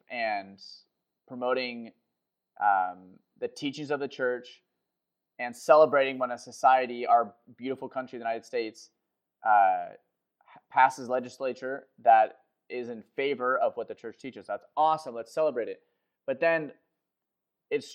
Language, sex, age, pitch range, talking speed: English, male, 20-39, 125-155 Hz, 130 wpm